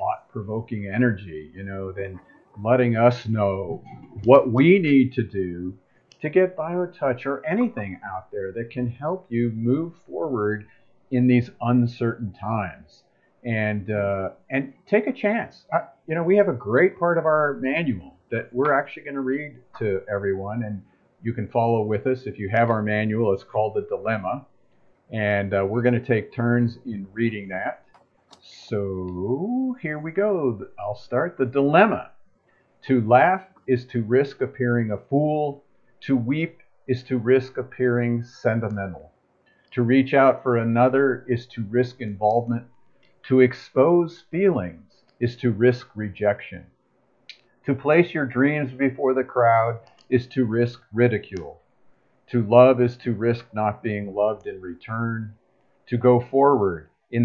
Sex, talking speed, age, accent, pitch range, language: male, 150 wpm, 50-69, American, 110-135 Hz, English